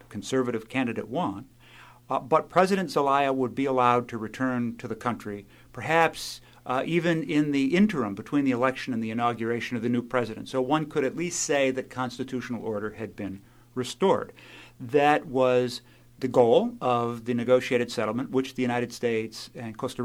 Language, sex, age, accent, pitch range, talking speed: English, male, 50-69, American, 115-130 Hz, 170 wpm